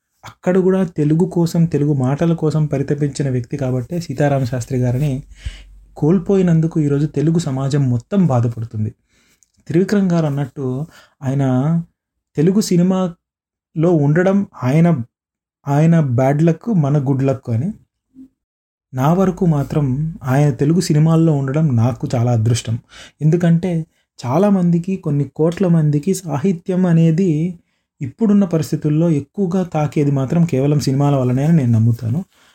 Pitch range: 130-170 Hz